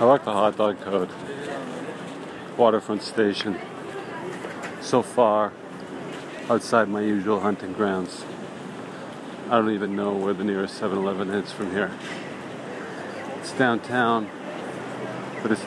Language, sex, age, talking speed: English, male, 40-59, 115 wpm